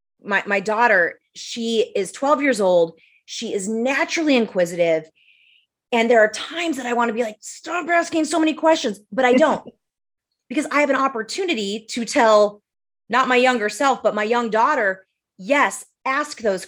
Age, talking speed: 30-49, 175 wpm